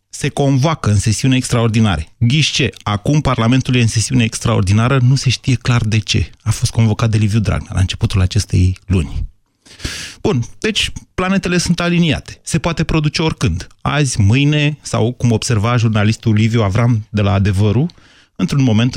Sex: male